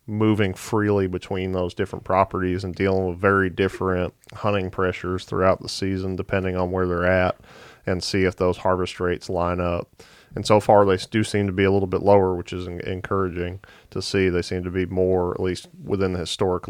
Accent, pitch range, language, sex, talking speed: American, 90-100 Hz, English, male, 200 wpm